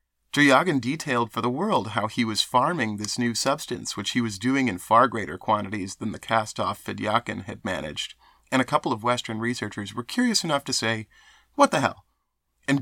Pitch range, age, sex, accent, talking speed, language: 110-135 Hz, 30-49, male, American, 190 wpm, English